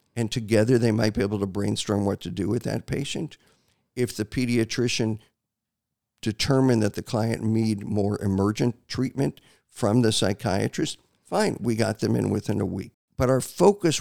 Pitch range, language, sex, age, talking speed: 100-120 Hz, English, male, 50-69, 165 wpm